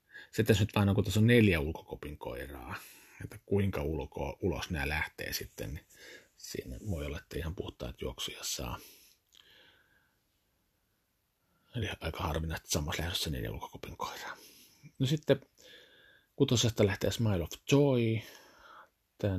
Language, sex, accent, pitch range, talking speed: Finnish, male, native, 85-105 Hz, 125 wpm